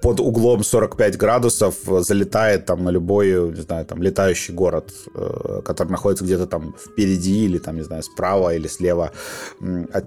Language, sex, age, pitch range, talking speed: Russian, male, 30-49, 90-105 Hz, 155 wpm